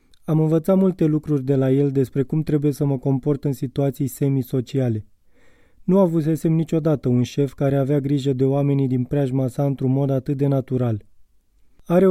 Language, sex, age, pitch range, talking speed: Romanian, male, 20-39, 135-155 Hz, 175 wpm